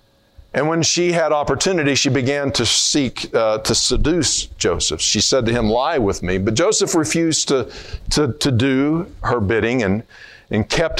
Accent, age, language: American, 50-69, English